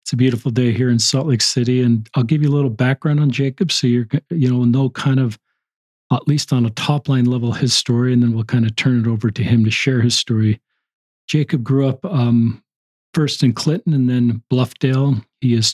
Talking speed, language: 225 wpm, English